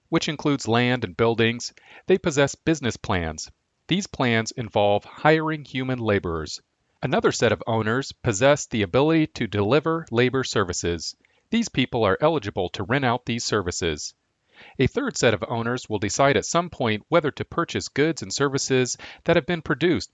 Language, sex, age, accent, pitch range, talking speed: English, male, 40-59, American, 110-150 Hz, 165 wpm